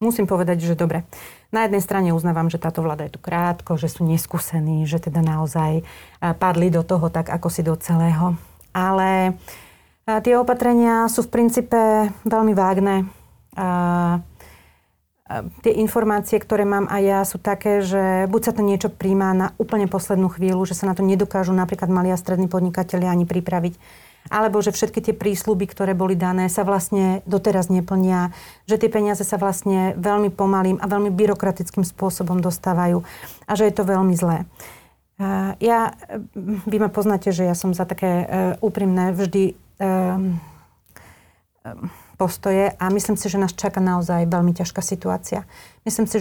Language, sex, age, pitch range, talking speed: Slovak, female, 30-49, 180-205 Hz, 155 wpm